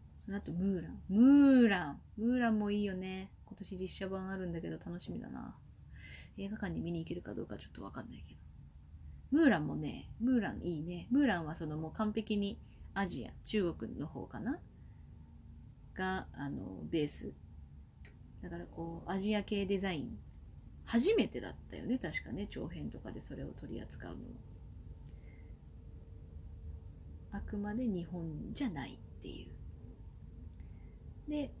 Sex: female